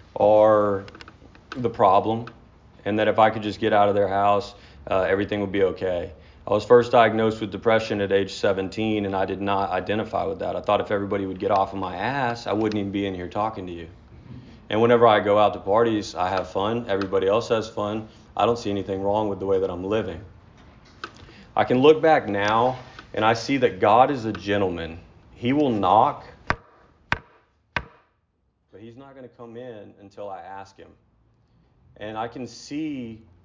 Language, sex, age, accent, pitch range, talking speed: English, male, 40-59, American, 95-115 Hz, 195 wpm